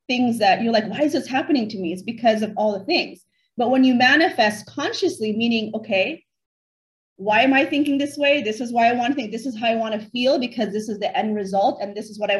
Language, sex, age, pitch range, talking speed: English, female, 30-49, 200-260 Hz, 250 wpm